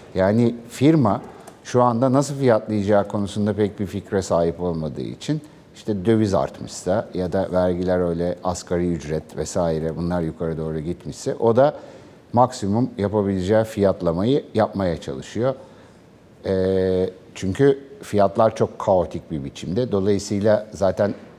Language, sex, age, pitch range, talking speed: Turkish, male, 60-79, 90-115 Hz, 120 wpm